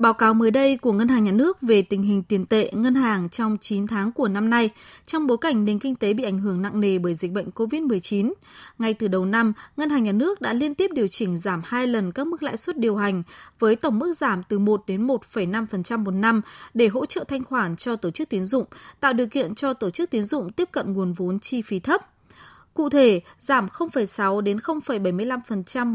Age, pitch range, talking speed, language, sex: 20-39, 200-255 Hz, 230 wpm, Vietnamese, female